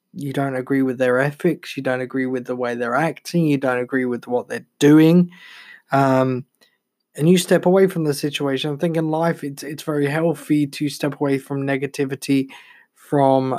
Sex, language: male, English